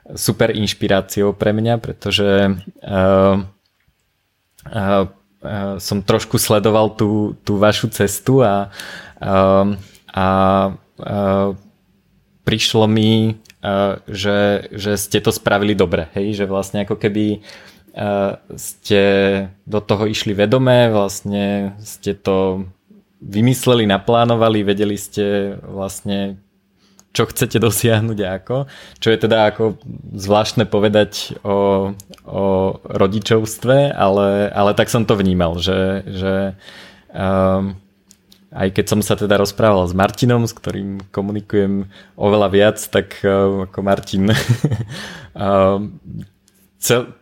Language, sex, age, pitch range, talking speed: Slovak, male, 20-39, 100-110 Hz, 115 wpm